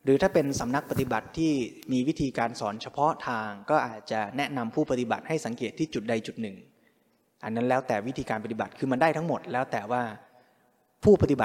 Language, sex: Thai, male